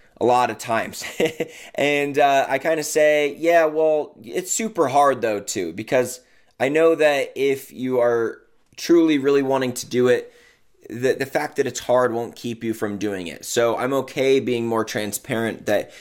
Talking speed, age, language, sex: 185 wpm, 20-39, English, male